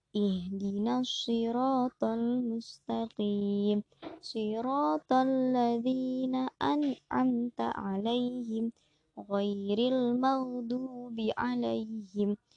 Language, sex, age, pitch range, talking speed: Indonesian, male, 20-39, 205-250 Hz, 50 wpm